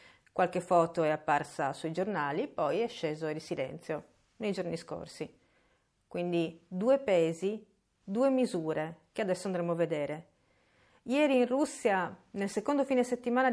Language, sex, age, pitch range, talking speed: Italian, female, 40-59, 175-235 Hz, 140 wpm